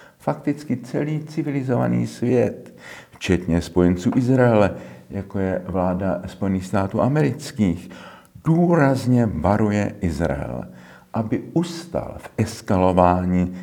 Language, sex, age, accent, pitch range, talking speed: Czech, male, 50-69, native, 85-115 Hz, 90 wpm